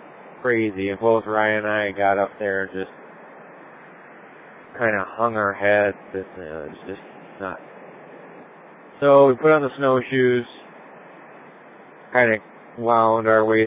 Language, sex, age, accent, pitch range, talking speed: English, male, 20-39, American, 100-120 Hz, 150 wpm